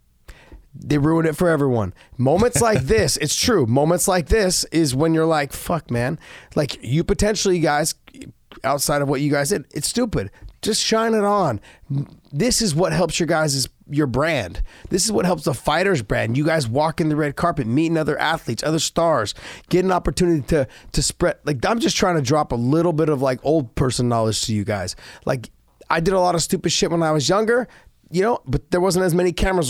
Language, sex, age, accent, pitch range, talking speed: English, male, 30-49, American, 140-185 Hz, 215 wpm